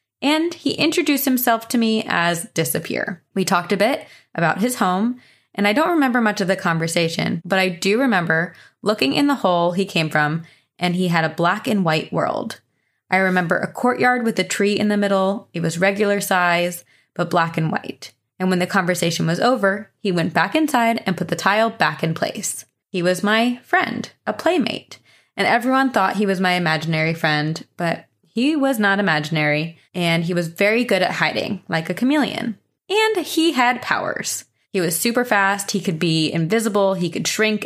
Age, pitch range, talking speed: 20-39, 170-230 Hz, 195 wpm